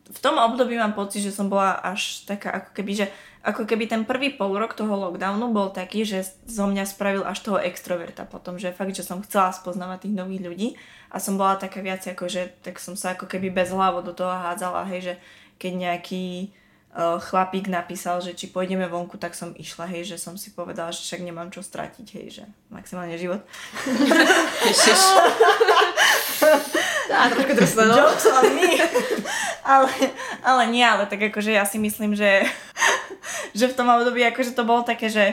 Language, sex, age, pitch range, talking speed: Slovak, female, 20-39, 185-220 Hz, 180 wpm